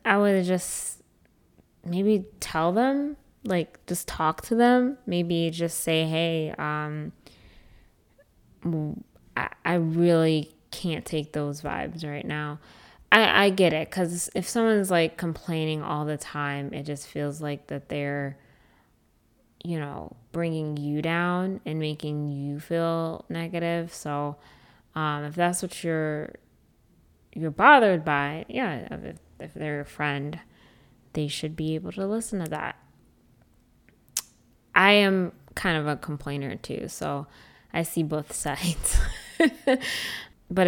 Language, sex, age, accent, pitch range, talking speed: English, female, 20-39, American, 150-175 Hz, 130 wpm